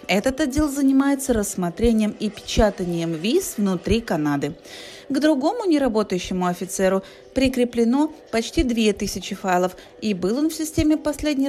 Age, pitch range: 30-49, 185-265 Hz